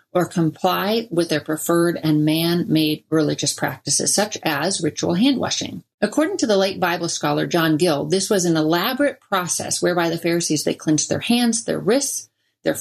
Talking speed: 170 wpm